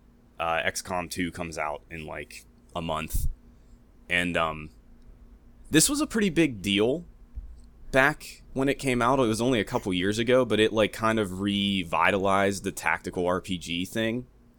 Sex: male